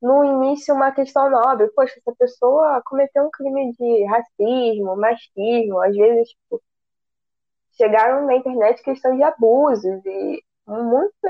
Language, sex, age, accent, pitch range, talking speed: Portuguese, female, 10-29, Brazilian, 200-275 Hz, 135 wpm